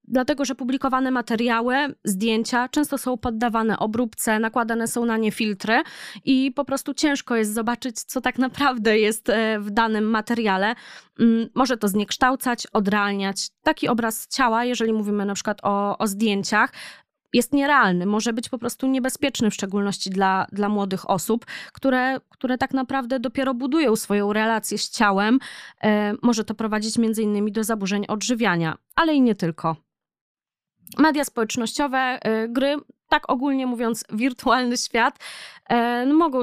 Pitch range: 210-265 Hz